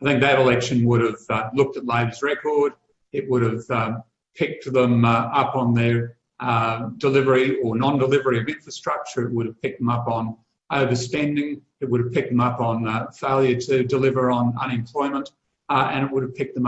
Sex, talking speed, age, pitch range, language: male, 200 wpm, 50-69, 120-145 Hz, English